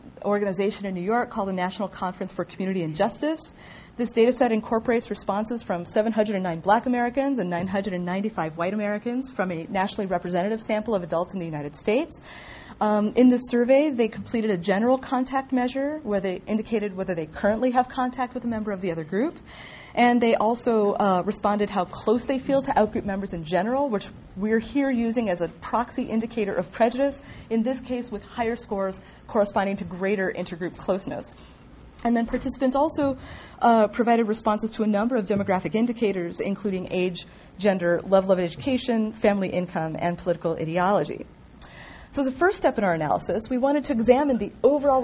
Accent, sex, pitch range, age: American, female, 195-250 Hz, 40-59